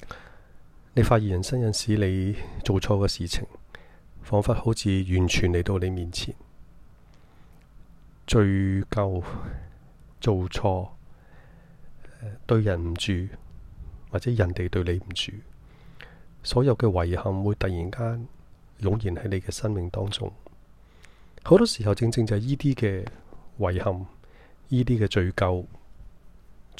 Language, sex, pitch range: Chinese, male, 90-110 Hz